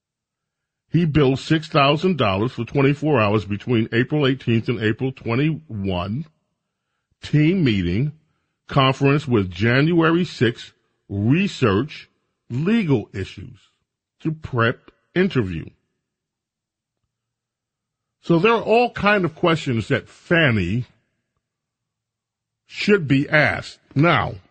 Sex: male